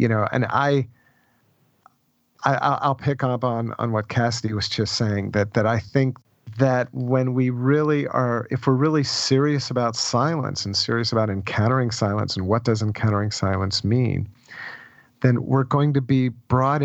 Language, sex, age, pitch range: English, male, 50-69, 105-125 Hz